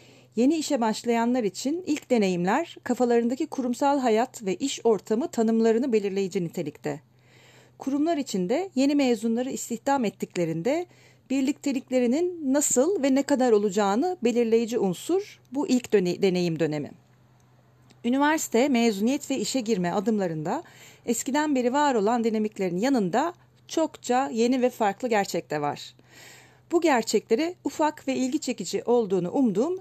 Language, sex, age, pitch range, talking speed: Turkish, female, 40-59, 200-275 Hz, 120 wpm